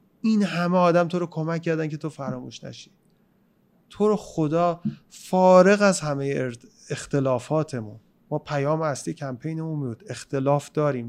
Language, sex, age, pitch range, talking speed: Persian, male, 30-49, 130-175 Hz, 140 wpm